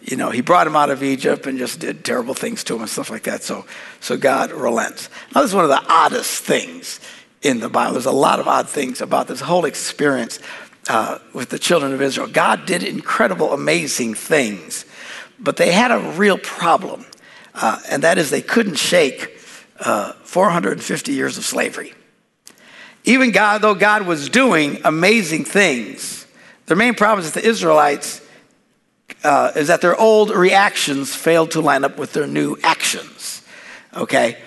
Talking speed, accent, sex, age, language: 180 wpm, American, male, 60-79, English